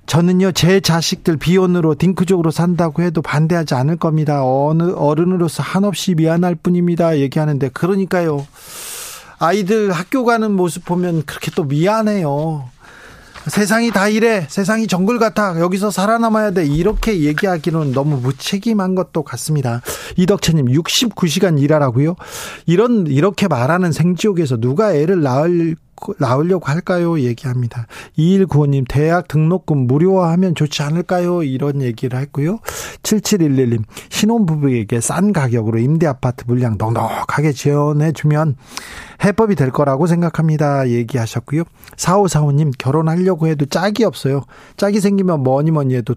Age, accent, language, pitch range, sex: 40-59, native, Korean, 140-185 Hz, male